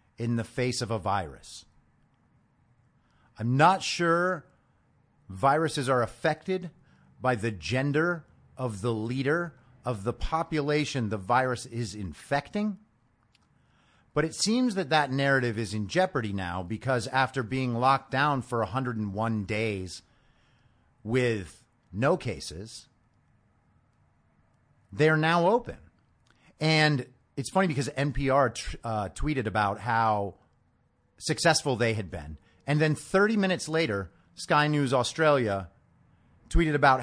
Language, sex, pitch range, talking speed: English, male, 110-145 Hz, 115 wpm